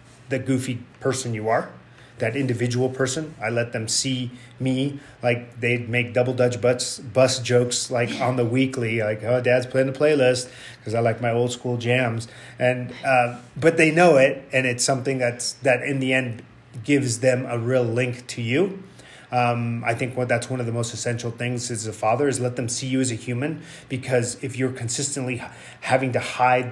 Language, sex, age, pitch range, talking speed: English, male, 30-49, 120-135 Hz, 195 wpm